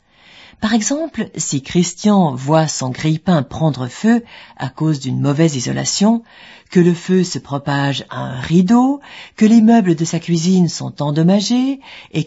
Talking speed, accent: 150 wpm, French